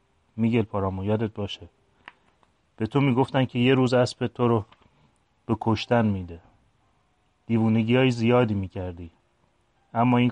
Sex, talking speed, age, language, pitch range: male, 120 wpm, 30-49, English, 100-125 Hz